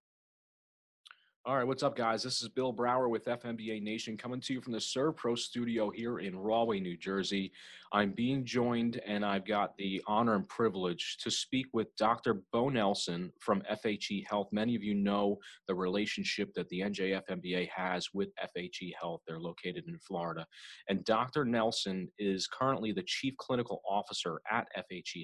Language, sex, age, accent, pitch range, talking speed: English, male, 30-49, American, 95-120 Hz, 170 wpm